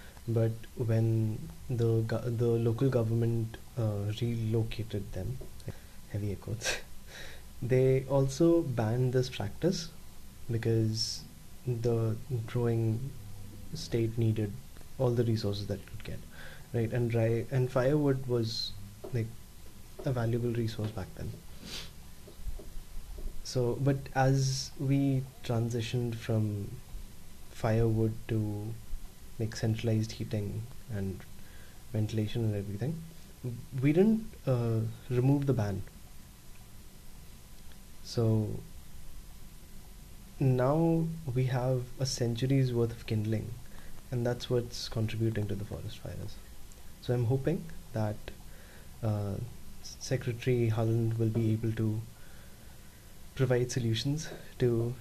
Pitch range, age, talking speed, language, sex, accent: 110-130 Hz, 20-39, 105 wpm, English, male, Indian